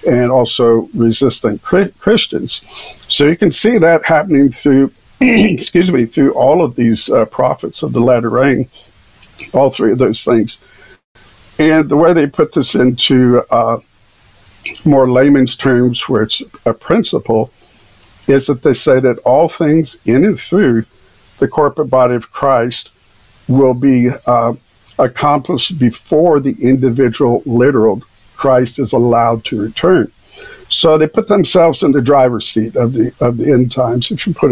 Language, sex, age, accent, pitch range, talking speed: English, male, 50-69, American, 115-155 Hz, 155 wpm